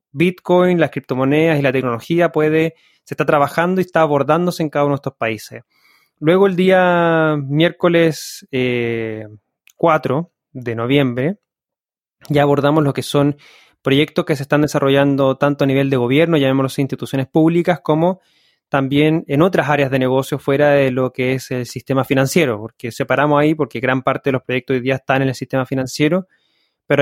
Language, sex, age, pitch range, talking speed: Spanish, male, 20-39, 130-155 Hz, 175 wpm